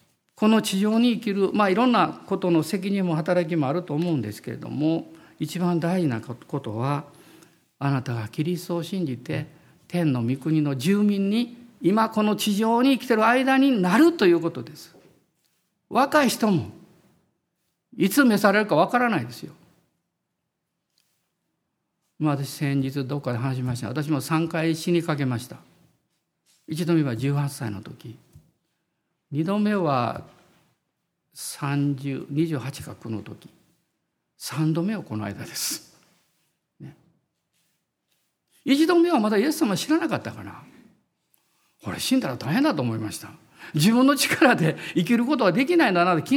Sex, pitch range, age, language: male, 140-210 Hz, 50-69, Japanese